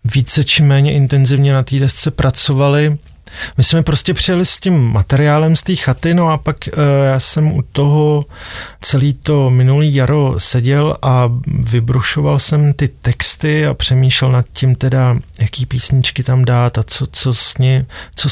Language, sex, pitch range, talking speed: Czech, male, 120-140 Hz, 165 wpm